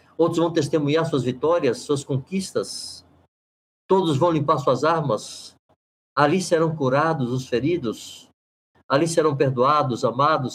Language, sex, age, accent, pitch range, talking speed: Portuguese, male, 60-79, Brazilian, 125-165 Hz, 120 wpm